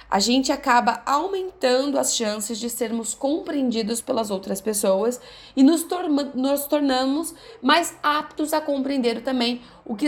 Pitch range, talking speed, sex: 225-295 Hz, 135 wpm, female